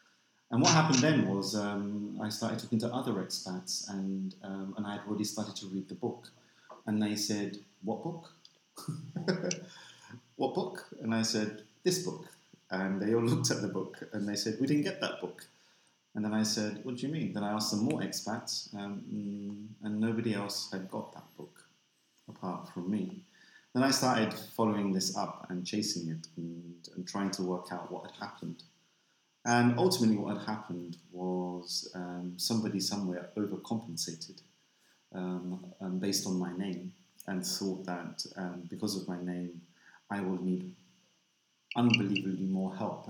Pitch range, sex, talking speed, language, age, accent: 90-105 Hz, male, 170 wpm, English, 30-49, British